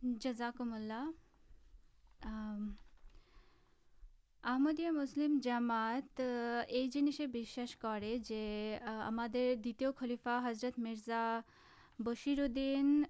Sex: female